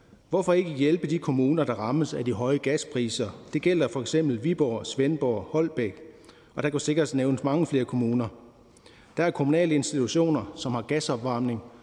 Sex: male